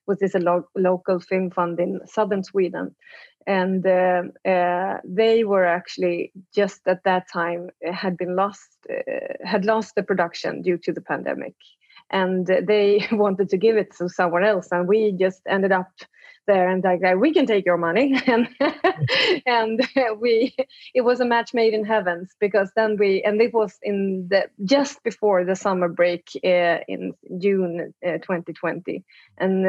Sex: female